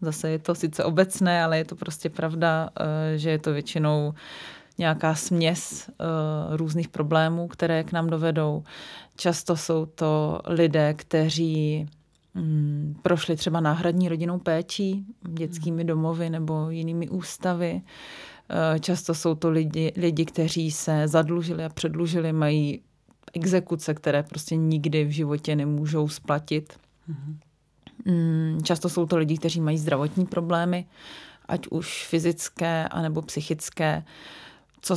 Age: 30-49